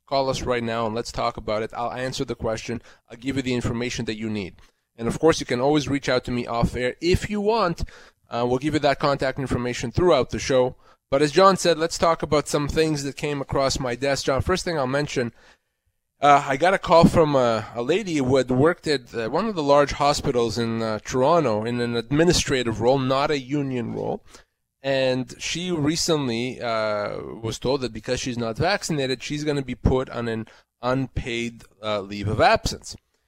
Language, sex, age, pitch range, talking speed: English, male, 20-39, 120-155 Hz, 210 wpm